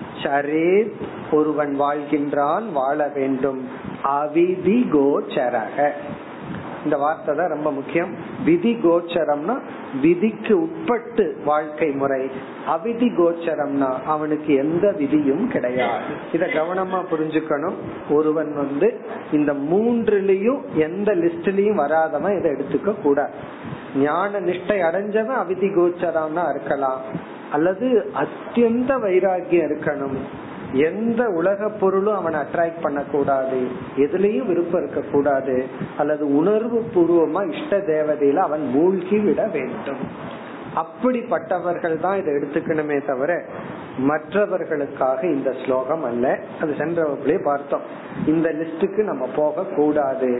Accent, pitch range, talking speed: native, 145-195 Hz, 75 wpm